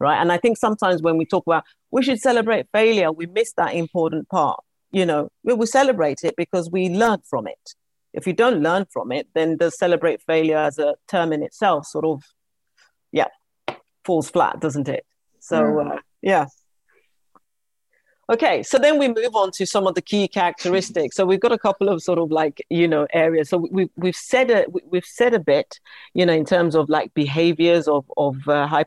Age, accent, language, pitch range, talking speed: 40-59, British, English, 155-195 Hz, 205 wpm